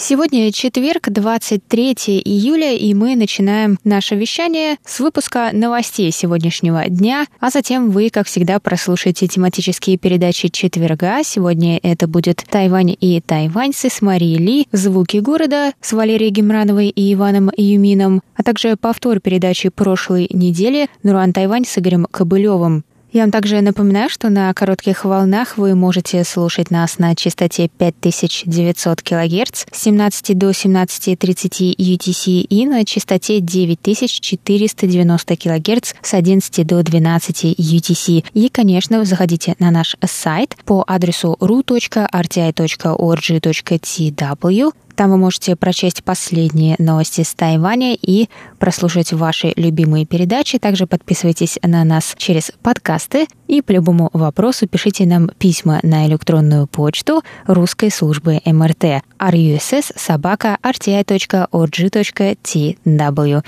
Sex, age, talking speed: female, 20-39, 115 wpm